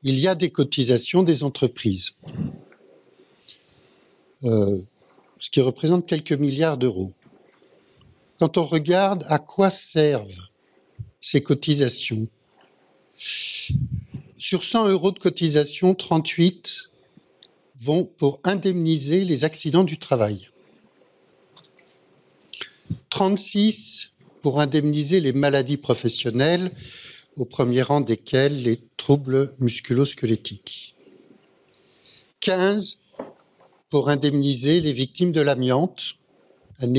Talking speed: 90 wpm